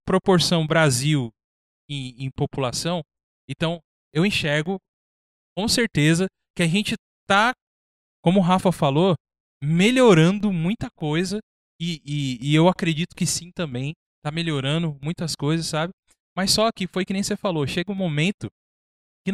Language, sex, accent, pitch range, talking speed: Portuguese, male, Brazilian, 145-205 Hz, 145 wpm